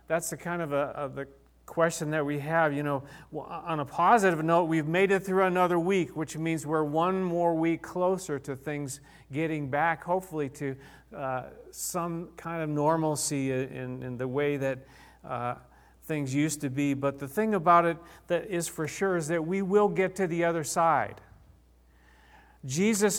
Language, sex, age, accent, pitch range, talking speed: English, male, 40-59, American, 140-180 Hz, 180 wpm